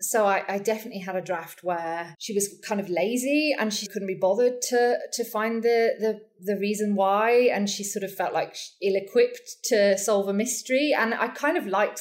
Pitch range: 185-245 Hz